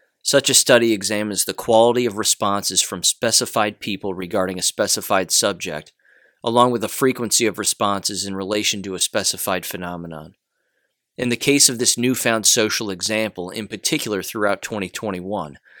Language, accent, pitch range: English, American, 95-120 Hz